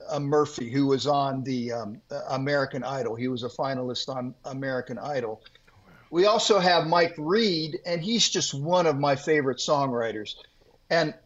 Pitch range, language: 135-175 Hz, English